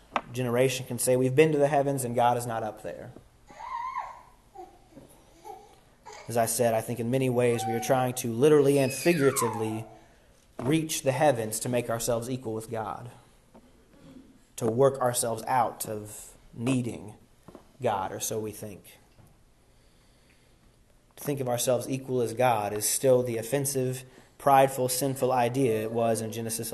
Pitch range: 115-140 Hz